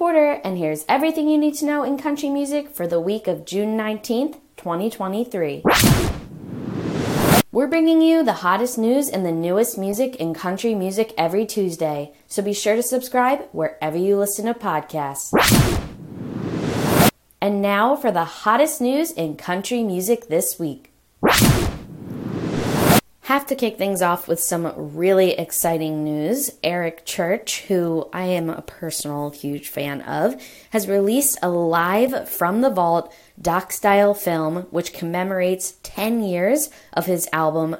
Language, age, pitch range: English, 20-39, 165-230 Hz